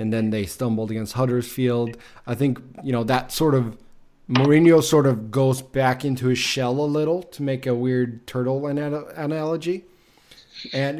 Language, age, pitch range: English, 20-39, 115-135 Hz